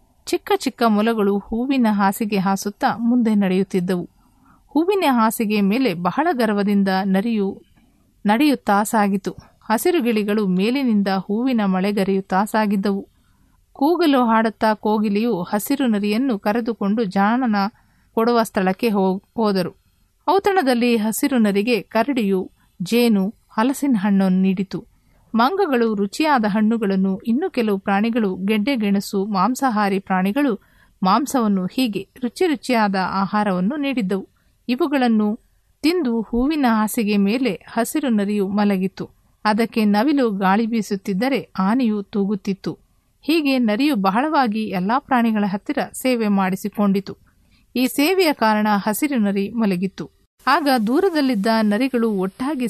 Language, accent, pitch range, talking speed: Kannada, native, 200-250 Hz, 95 wpm